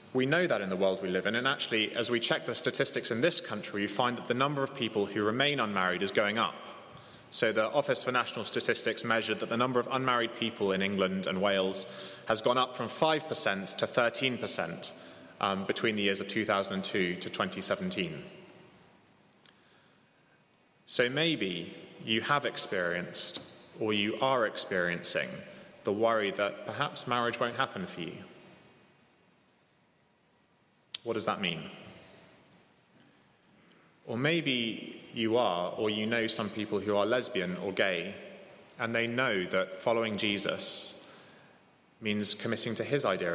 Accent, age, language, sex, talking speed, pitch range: British, 20-39, English, male, 155 wpm, 100-130 Hz